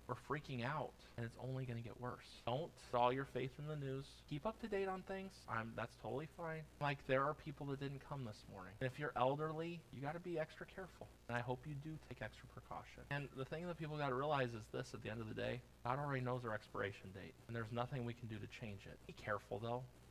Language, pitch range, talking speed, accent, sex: English, 125-155 Hz, 255 wpm, American, male